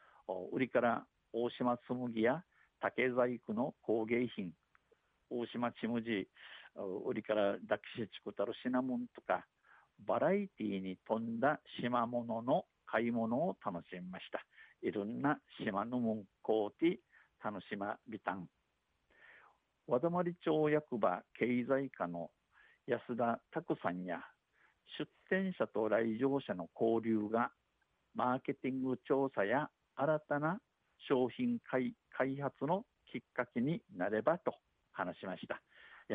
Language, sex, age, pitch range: Japanese, male, 50-69, 115-135 Hz